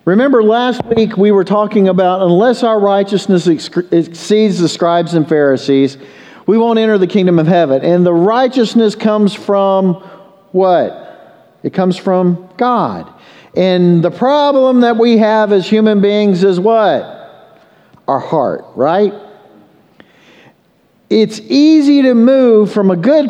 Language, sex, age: English, male, 50-69